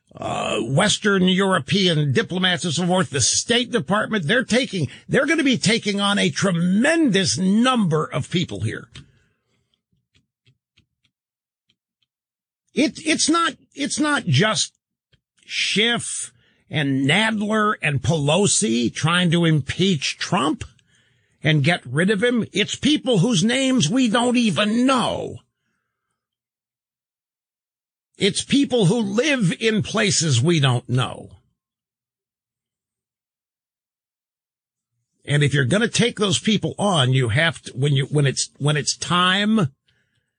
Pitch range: 135-200 Hz